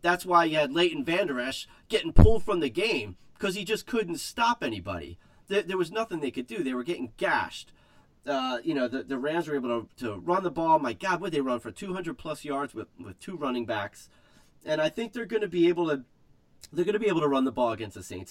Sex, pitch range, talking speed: male, 105-165 Hz, 245 wpm